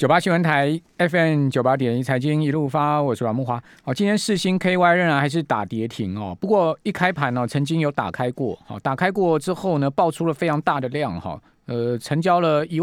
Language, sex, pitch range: Chinese, male, 125-160 Hz